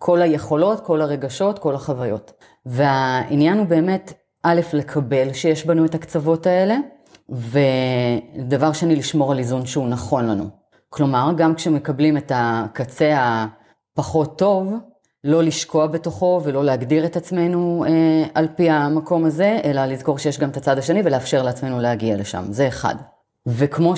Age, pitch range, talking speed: 30-49, 130-160 Hz, 145 wpm